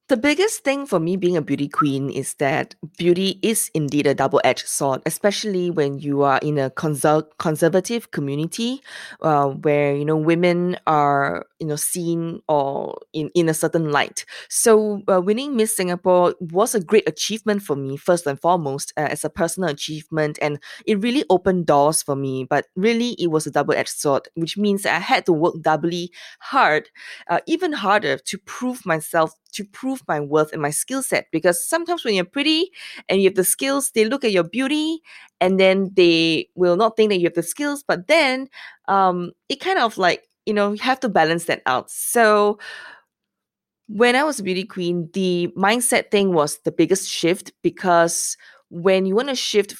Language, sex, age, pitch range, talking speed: English, female, 20-39, 155-220 Hz, 190 wpm